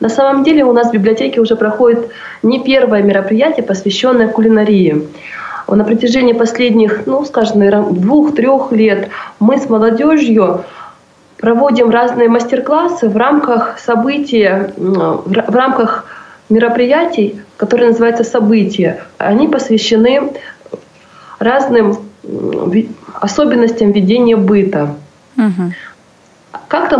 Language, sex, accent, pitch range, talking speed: Russian, female, native, 200-245 Hz, 95 wpm